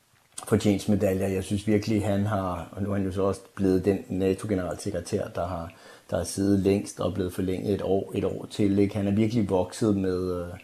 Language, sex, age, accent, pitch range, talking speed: Danish, male, 30-49, native, 95-110 Hz, 215 wpm